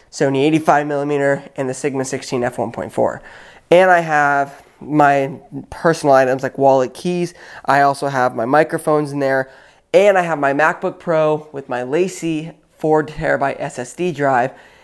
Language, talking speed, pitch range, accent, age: English, 145 wpm, 130-155 Hz, American, 20-39